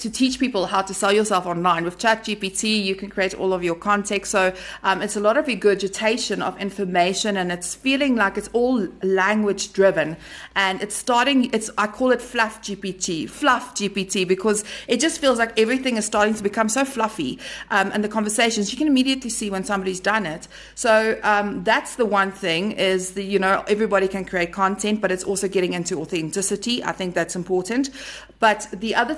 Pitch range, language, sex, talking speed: 190-230 Hz, English, female, 195 wpm